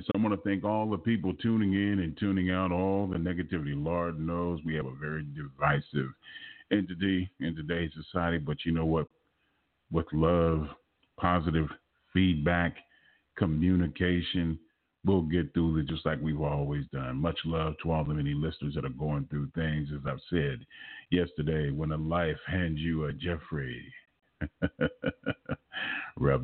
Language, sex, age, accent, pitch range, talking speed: English, male, 40-59, American, 75-90 Hz, 155 wpm